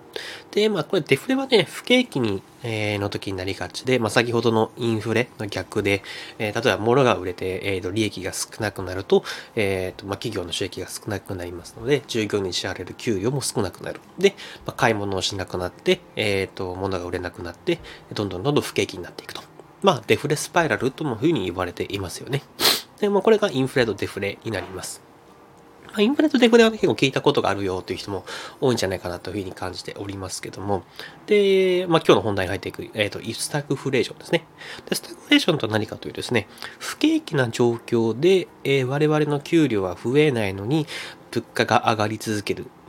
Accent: native